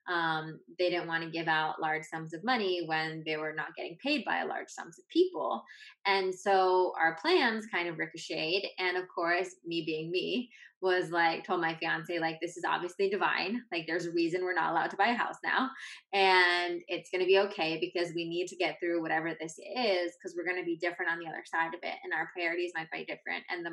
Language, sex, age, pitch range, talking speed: English, female, 20-39, 165-190 Hz, 230 wpm